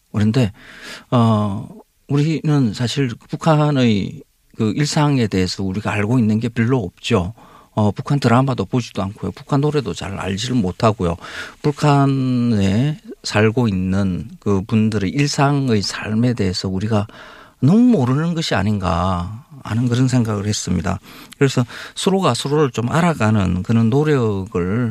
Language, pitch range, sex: Korean, 95-125 Hz, male